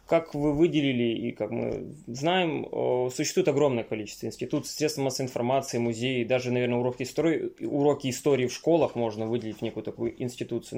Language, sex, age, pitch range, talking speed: Russian, male, 20-39, 120-155 Hz, 160 wpm